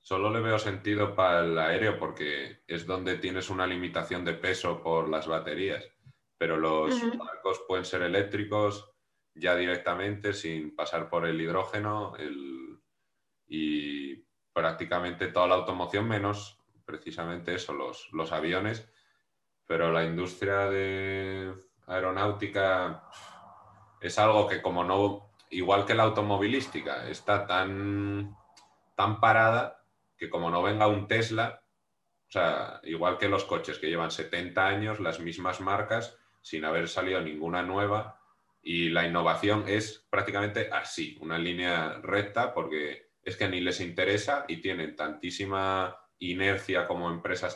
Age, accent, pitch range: 30-49, Spanish, 85-105 Hz